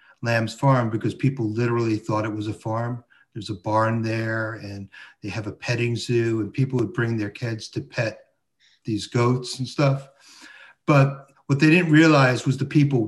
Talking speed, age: 185 wpm, 50-69